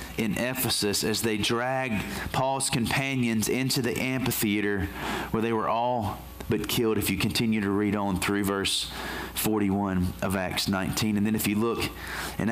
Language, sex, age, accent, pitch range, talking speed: English, male, 30-49, American, 100-120 Hz, 165 wpm